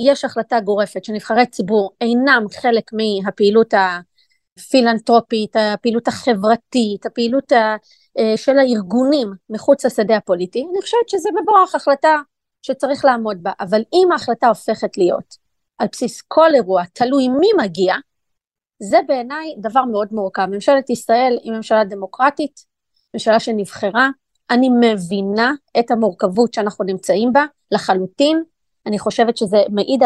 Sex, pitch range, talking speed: female, 210-255 Hz, 120 wpm